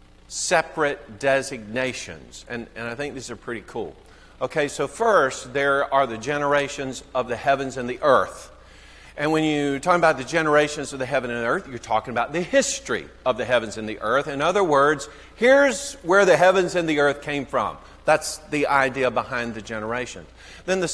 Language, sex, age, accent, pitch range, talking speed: English, male, 50-69, American, 120-155 Hz, 190 wpm